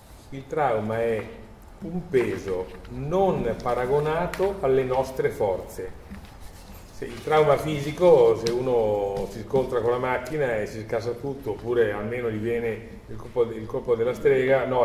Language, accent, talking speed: Italian, native, 145 wpm